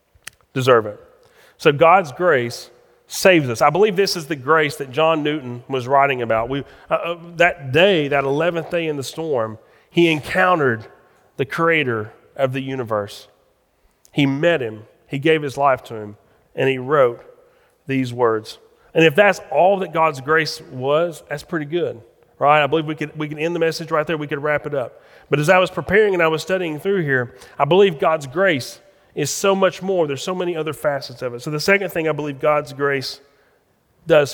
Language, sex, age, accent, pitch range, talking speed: English, male, 40-59, American, 140-180 Hz, 195 wpm